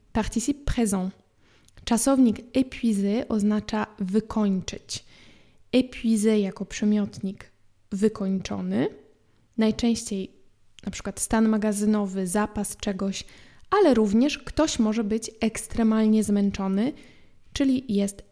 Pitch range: 195-235 Hz